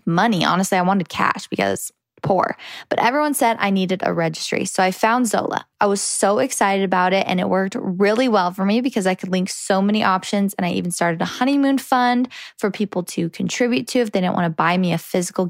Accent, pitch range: American, 185-235 Hz